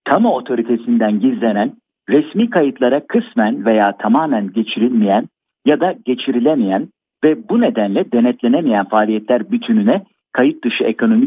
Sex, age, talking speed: male, 50-69, 110 wpm